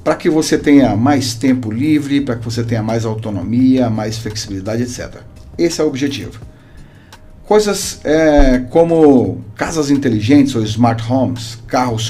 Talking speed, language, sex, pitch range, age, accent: 140 wpm, Portuguese, male, 115-145 Hz, 40-59, Brazilian